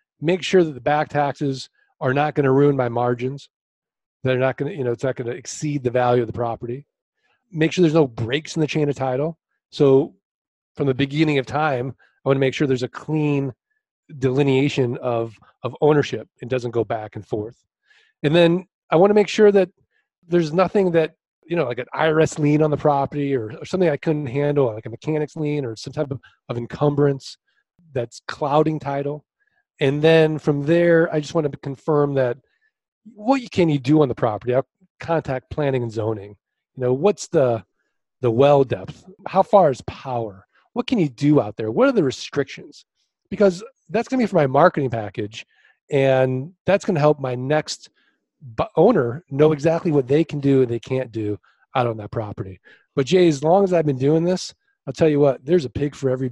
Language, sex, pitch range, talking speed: English, male, 130-165 Hz, 200 wpm